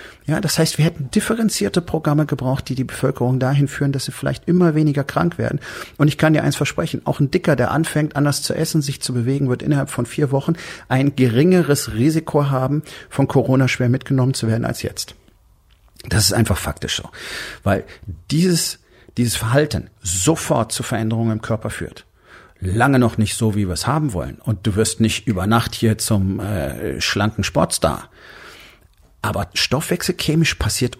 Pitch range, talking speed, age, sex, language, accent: 110-145 Hz, 180 wpm, 40-59, male, German, German